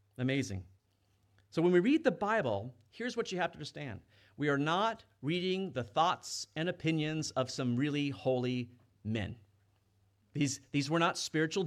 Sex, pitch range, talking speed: male, 110-155 Hz, 160 wpm